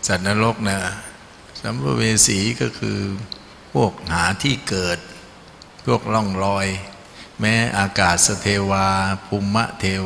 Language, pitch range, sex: Thai, 90-105 Hz, male